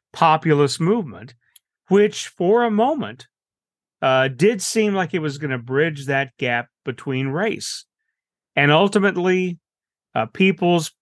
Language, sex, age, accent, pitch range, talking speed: English, male, 40-59, American, 130-170 Hz, 125 wpm